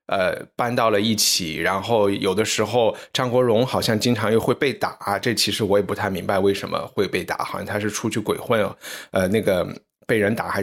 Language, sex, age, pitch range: Chinese, male, 20-39, 100-125 Hz